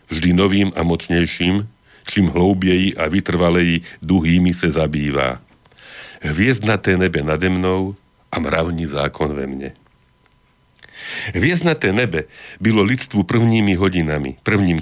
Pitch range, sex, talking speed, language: 85-100 Hz, male, 110 wpm, Slovak